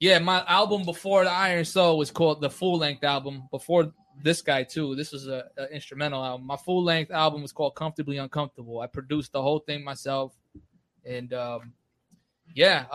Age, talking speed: 20-39, 175 wpm